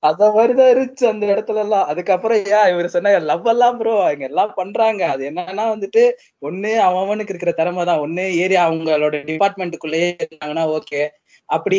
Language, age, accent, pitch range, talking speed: Tamil, 20-39, native, 170-210 Hz, 160 wpm